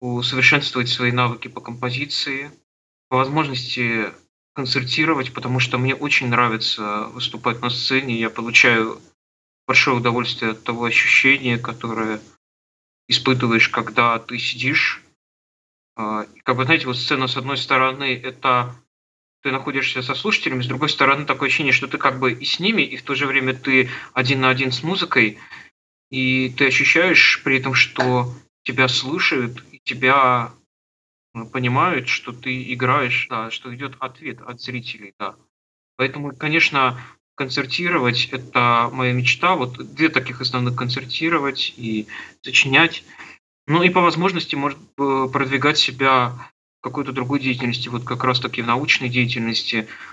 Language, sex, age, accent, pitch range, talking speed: Russian, male, 20-39, native, 120-135 Hz, 140 wpm